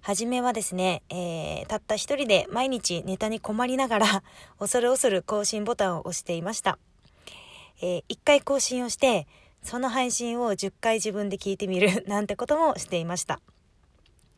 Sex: female